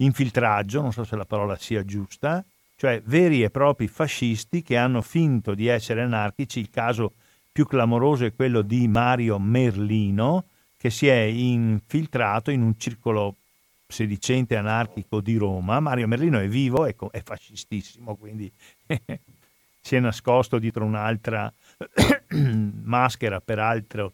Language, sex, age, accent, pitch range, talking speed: Italian, male, 50-69, native, 110-140 Hz, 135 wpm